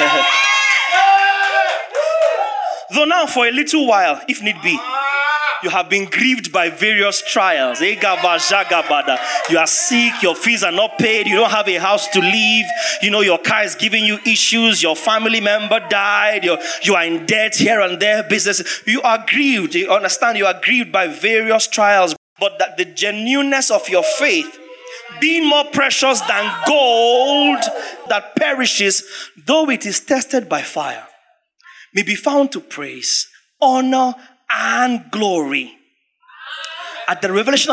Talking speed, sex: 150 wpm, male